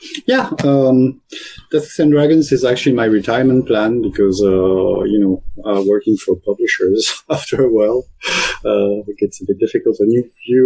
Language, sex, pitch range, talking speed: English, male, 95-130 Hz, 170 wpm